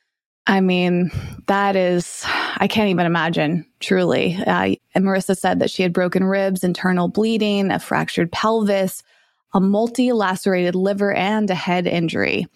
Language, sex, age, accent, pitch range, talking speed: English, female, 20-39, American, 180-205 Hz, 145 wpm